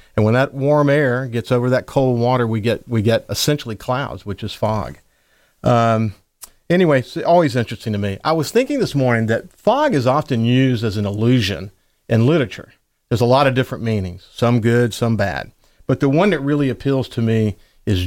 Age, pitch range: 40-59, 110-145 Hz